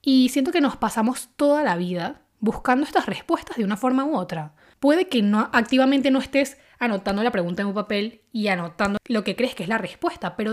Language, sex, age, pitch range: Spanish, female, 10-29, 195-270 Hz